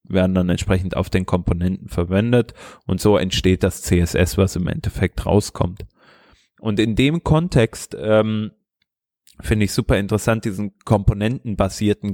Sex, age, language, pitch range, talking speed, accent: male, 20-39, German, 95-110 Hz, 140 wpm, German